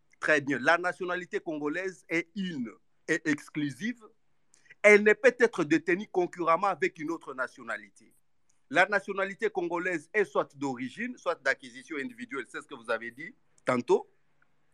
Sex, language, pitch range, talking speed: male, French, 165-250 Hz, 140 wpm